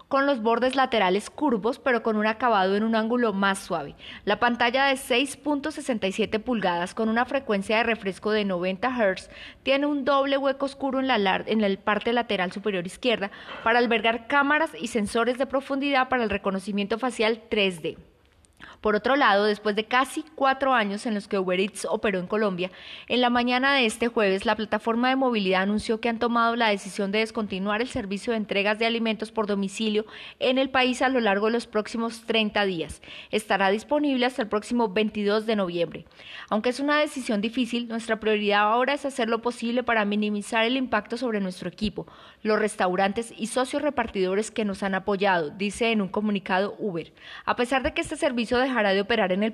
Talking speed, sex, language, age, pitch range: 190 wpm, female, Spanish, 20-39, 205-255 Hz